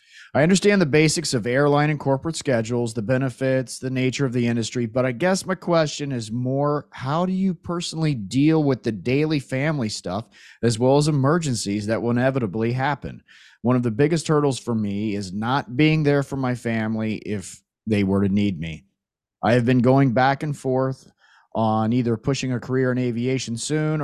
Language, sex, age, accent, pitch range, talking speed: English, male, 30-49, American, 110-150 Hz, 190 wpm